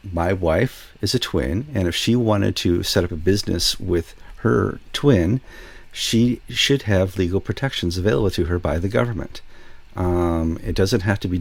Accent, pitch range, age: American, 80-100 Hz, 50-69